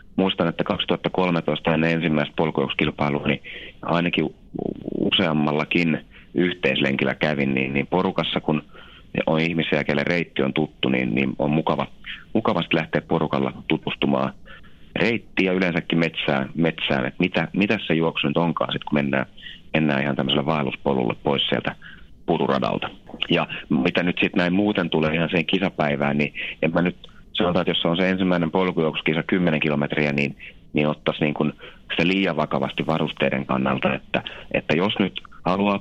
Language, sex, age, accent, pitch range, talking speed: Finnish, male, 30-49, native, 70-85 Hz, 145 wpm